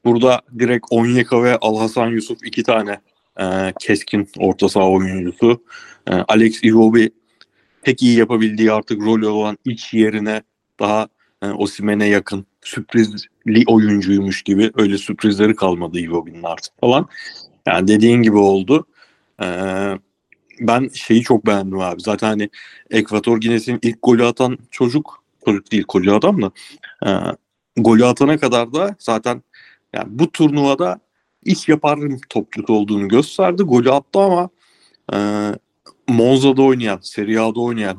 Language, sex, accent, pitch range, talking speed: Turkish, male, native, 100-125 Hz, 130 wpm